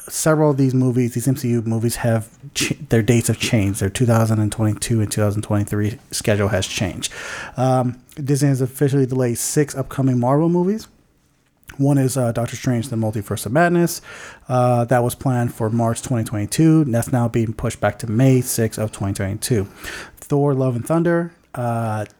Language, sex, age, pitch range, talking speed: English, male, 30-49, 115-145 Hz, 160 wpm